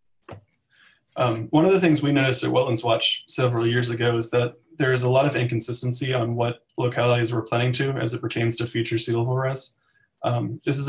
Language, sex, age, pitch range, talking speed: English, male, 20-39, 115-130 Hz, 210 wpm